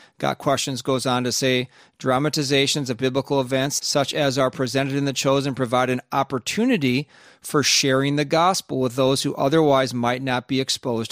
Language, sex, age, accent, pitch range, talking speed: English, male, 40-59, American, 130-150 Hz, 175 wpm